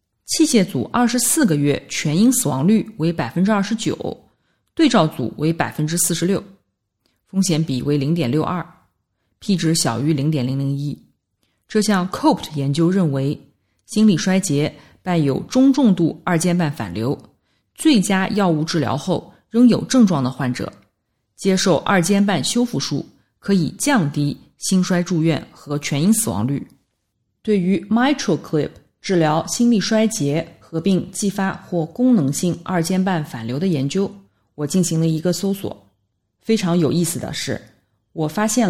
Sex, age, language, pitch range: female, 20-39, Chinese, 145-195 Hz